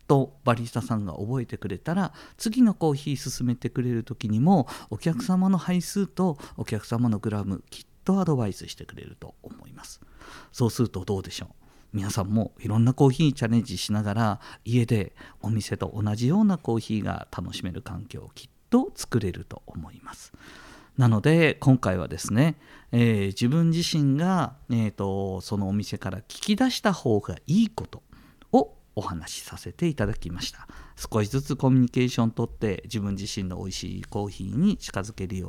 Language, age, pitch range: Japanese, 50-69, 100-145 Hz